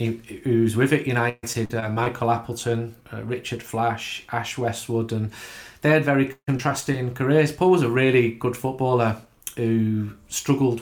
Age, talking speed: 30-49, 145 wpm